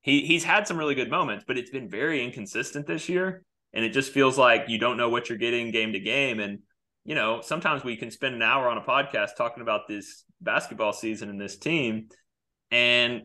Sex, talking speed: male, 220 wpm